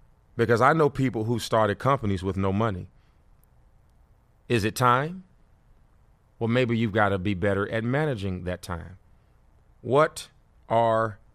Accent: American